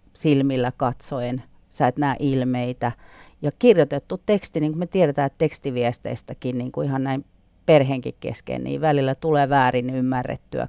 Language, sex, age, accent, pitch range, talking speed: Finnish, female, 40-59, native, 125-160 Hz, 140 wpm